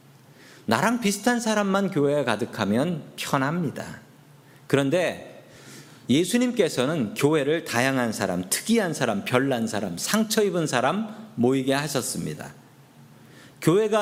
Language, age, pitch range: Korean, 40-59, 135-210 Hz